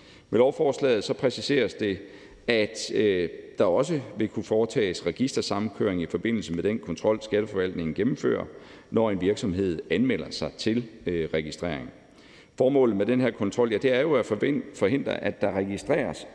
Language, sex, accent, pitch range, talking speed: Danish, male, native, 100-150 Hz, 155 wpm